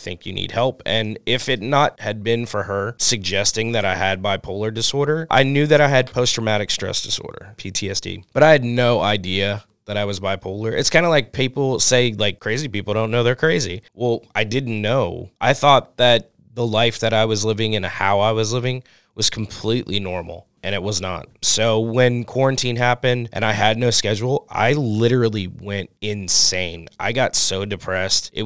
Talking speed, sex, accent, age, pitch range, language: 195 wpm, male, American, 20-39, 95-120 Hz, English